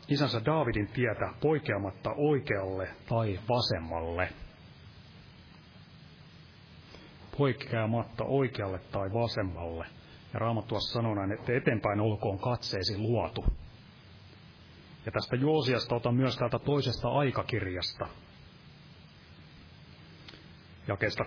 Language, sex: Finnish, male